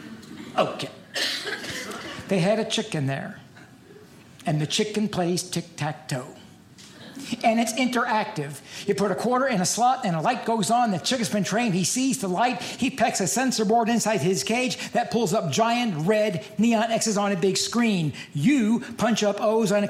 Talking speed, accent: 180 wpm, American